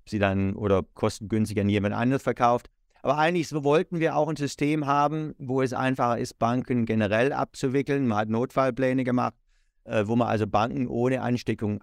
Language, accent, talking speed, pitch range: German, German, 170 wpm, 115-135 Hz